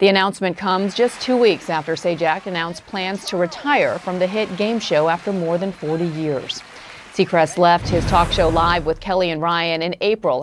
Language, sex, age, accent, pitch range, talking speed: English, female, 40-59, American, 170-220 Hz, 195 wpm